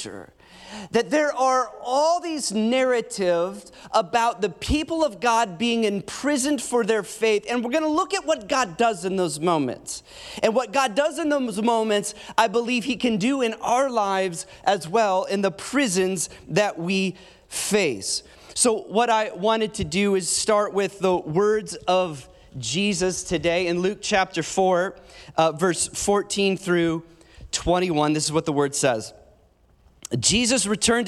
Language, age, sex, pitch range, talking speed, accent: English, 30-49, male, 180-225 Hz, 160 wpm, American